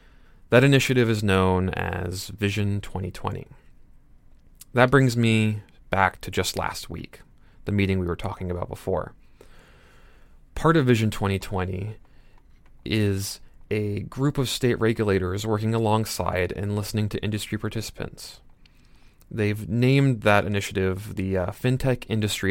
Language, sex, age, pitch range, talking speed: English, male, 30-49, 95-115 Hz, 125 wpm